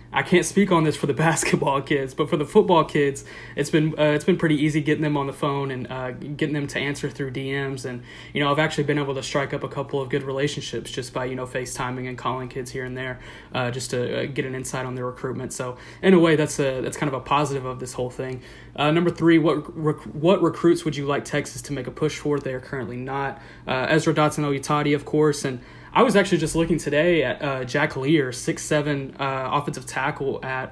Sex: male